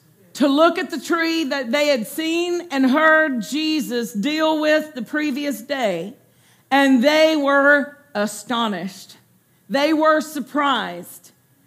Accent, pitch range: American, 250-320 Hz